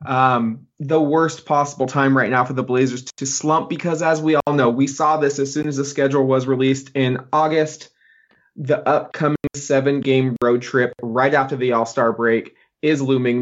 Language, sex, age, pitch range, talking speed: English, male, 20-39, 130-160 Hz, 190 wpm